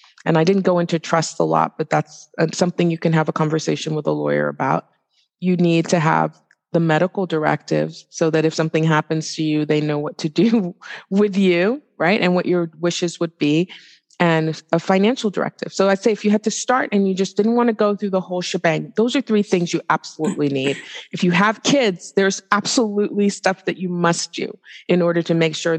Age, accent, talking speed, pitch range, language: 30-49, American, 220 wpm, 165-205 Hz, English